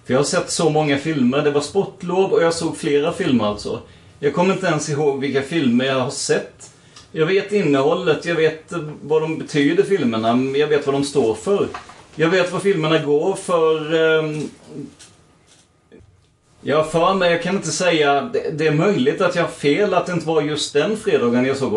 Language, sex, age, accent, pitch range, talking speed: Swedish, male, 30-49, native, 140-185 Hz, 195 wpm